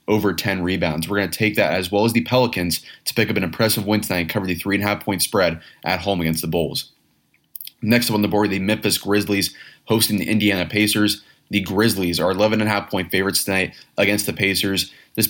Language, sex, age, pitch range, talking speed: English, male, 20-39, 90-105 Hz, 235 wpm